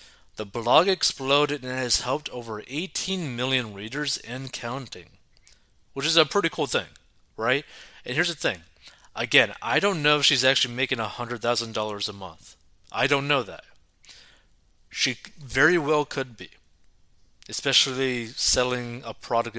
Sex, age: male, 30-49